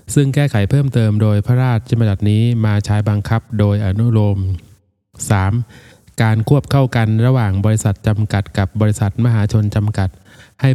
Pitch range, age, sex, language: 105-120 Hz, 20-39, male, Thai